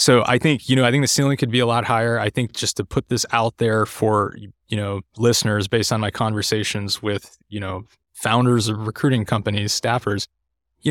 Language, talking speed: English, 215 wpm